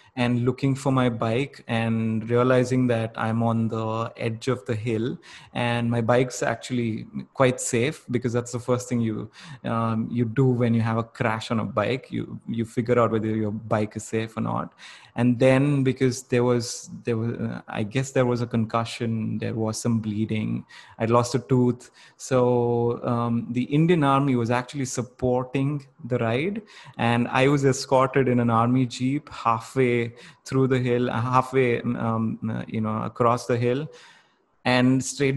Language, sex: English, male